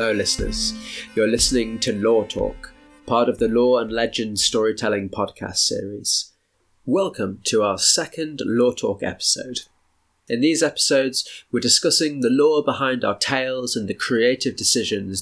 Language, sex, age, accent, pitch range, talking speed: English, male, 30-49, British, 105-135 Hz, 145 wpm